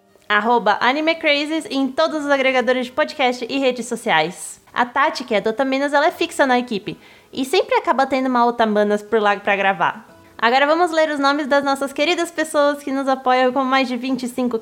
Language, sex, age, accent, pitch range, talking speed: Portuguese, female, 20-39, Brazilian, 230-295 Hz, 205 wpm